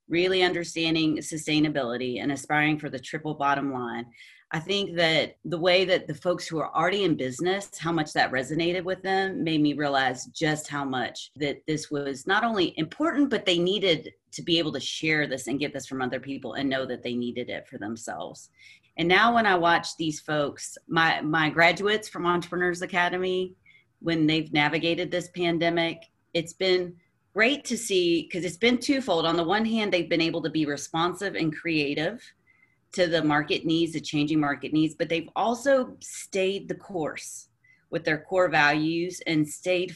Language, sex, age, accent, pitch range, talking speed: English, female, 30-49, American, 145-180 Hz, 185 wpm